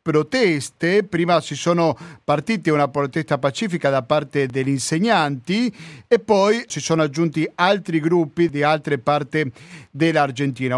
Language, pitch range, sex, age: Italian, 140-170 Hz, male, 50-69